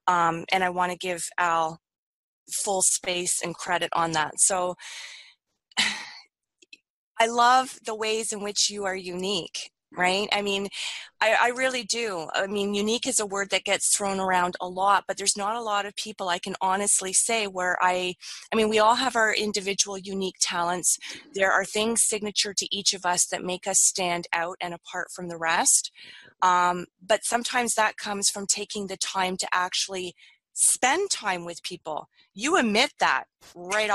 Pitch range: 180-220 Hz